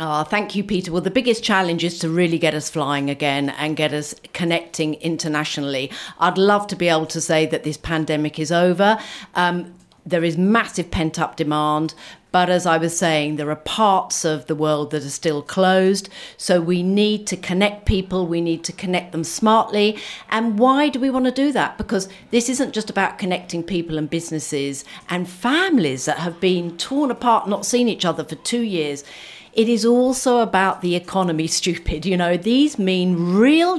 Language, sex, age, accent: English, female, 50-69, British